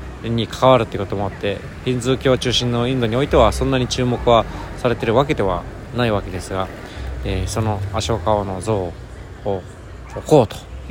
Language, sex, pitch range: Japanese, male, 95-120 Hz